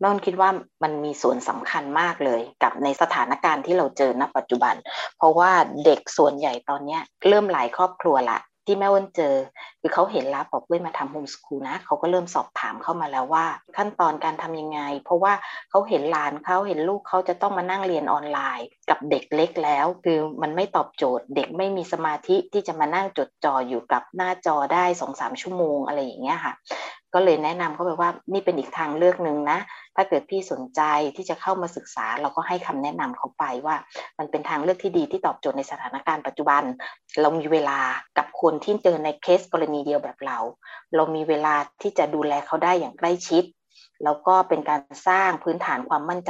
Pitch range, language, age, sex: 150-185 Hz, Thai, 20-39, female